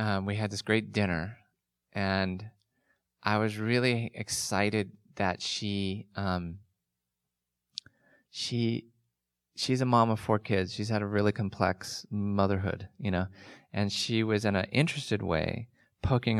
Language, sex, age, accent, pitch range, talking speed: English, male, 20-39, American, 95-110 Hz, 135 wpm